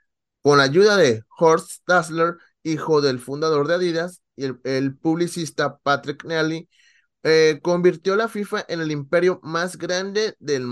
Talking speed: 150 wpm